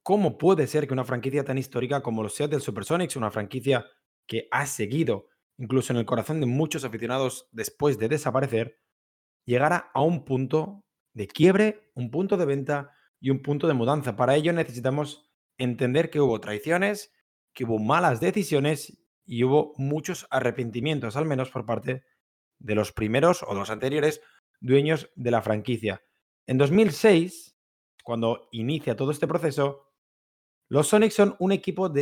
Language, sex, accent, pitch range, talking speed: Spanish, male, Spanish, 120-155 Hz, 160 wpm